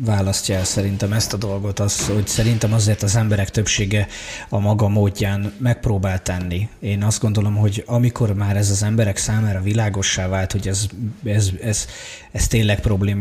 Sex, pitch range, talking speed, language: male, 100-115 Hz, 175 wpm, Hungarian